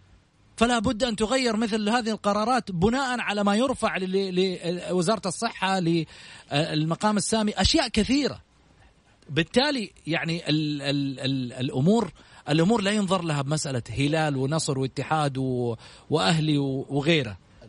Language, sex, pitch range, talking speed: Arabic, male, 135-215 Hz, 100 wpm